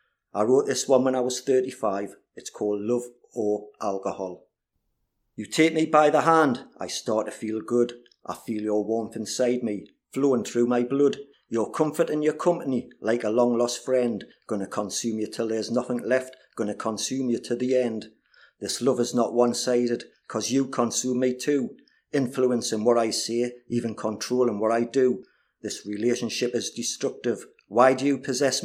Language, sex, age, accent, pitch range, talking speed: English, male, 50-69, British, 110-130 Hz, 175 wpm